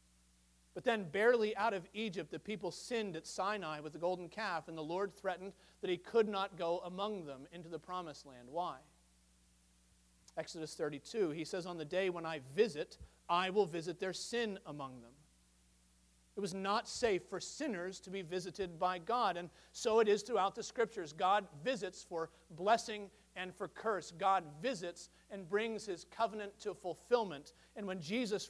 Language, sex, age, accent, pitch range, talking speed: English, male, 40-59, American, 155-210 Hz, 175 wpm